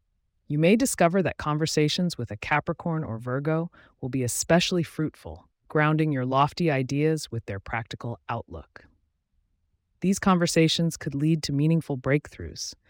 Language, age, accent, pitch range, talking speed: English, 30-49, American, 110-160 Hz, 135 wpm